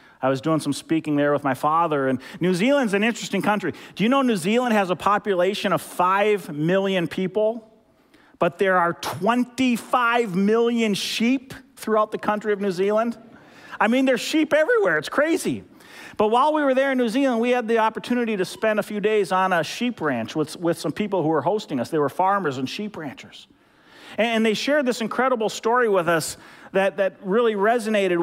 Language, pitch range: English, 185-235 Hz